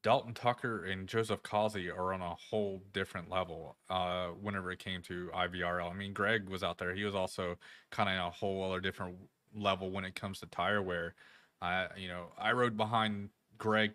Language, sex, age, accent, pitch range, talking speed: English, male, 20-39, American, 90-105 Hz, 200 wpm